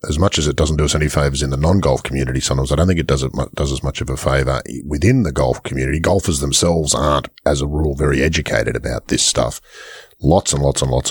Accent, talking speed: Australian, 250 wpm